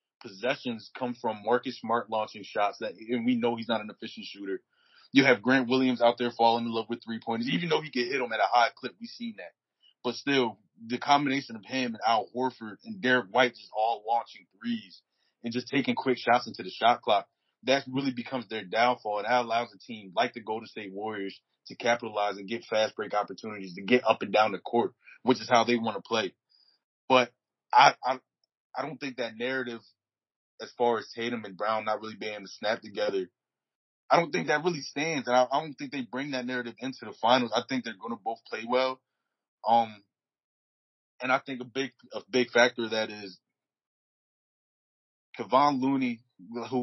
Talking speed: 210 wpm